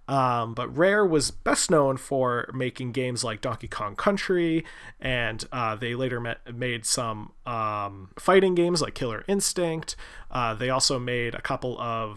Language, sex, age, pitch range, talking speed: English, male, 30-49, 115-145 Hz, 165 wpm